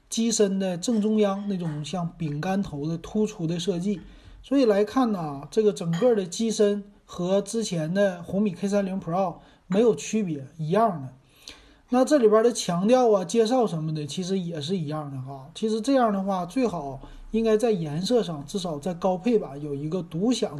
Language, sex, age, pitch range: Chinese, male, 30-49, 155-210 Hz